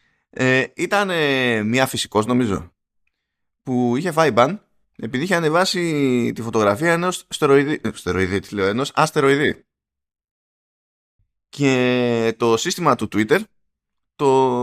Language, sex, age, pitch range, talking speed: Greek, male, 20-39, 105-165 Hz, 95 wpm